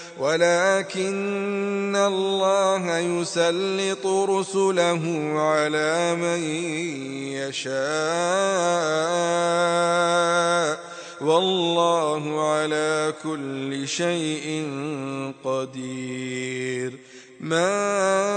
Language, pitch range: Arabic, 155-190 Hz